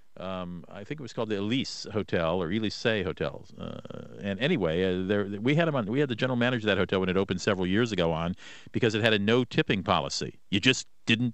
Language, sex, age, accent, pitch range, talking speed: English, male, 50-69, American, 105-150 Hz, 245 wpm